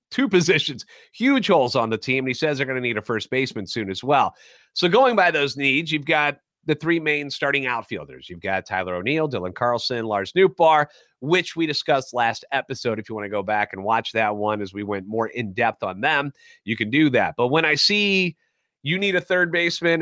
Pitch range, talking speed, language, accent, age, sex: 120-165 Hz, 225 wpm, English, American, 30-49, male